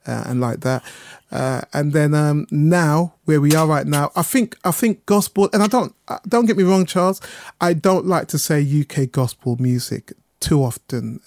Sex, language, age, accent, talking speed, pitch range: male, English, 30-49, British, 200 wpm, 135-165 Hz